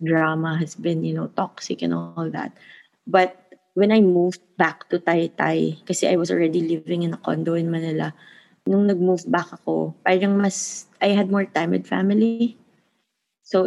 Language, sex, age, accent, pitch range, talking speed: English, female, 20-39, Filipino, 165-215 Hz, 170 wpm